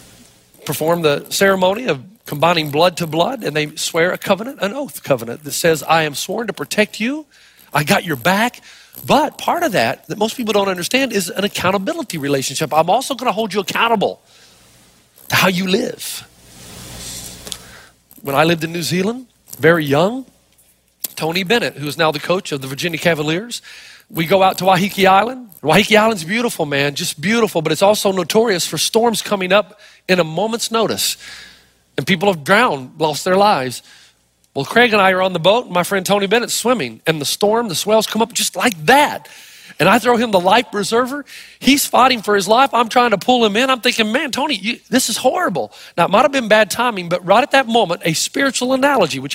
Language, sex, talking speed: English, male, 200 wpm